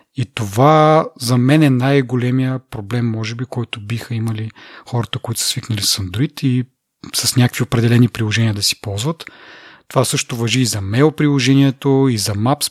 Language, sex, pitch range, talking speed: Bulgarian, male, 115-140 Hz, 170 wpm